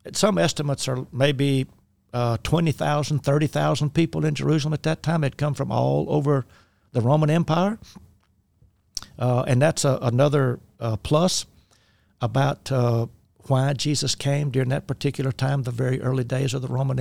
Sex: male